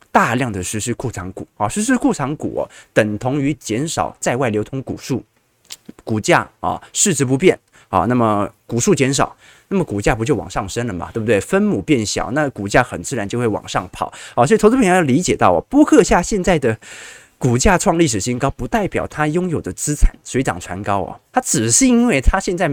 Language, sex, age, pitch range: Chinese, male, 20-39, 115-185 Hz